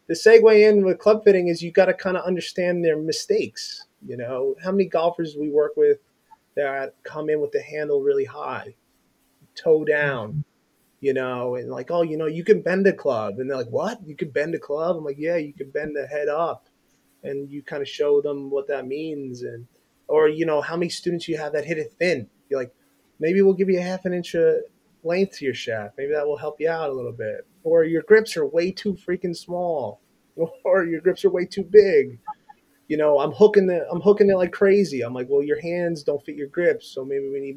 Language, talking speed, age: English, 235 wpm, 30-49